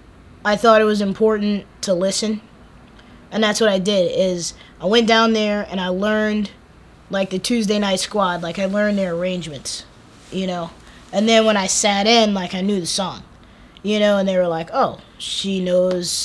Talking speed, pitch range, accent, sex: 190 wpm, 185-225 Hz, American, female